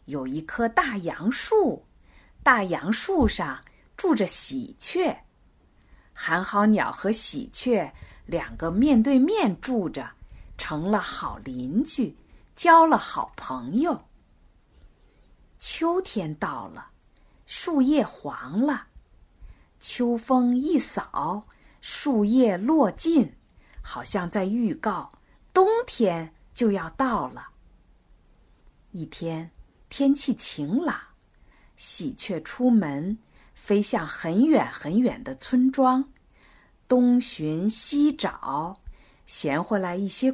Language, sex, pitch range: Chinese, female, 200-280 Hz